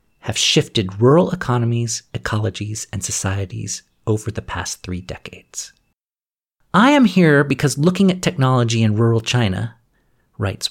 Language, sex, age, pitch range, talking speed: English, male, 40-59, 110-145 Hz, 130 wpm